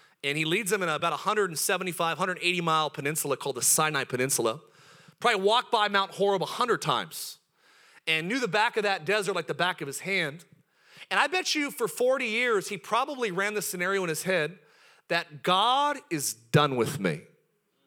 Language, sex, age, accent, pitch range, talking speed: English, male, 40-59, American, 175-250 Hz, 180 wpm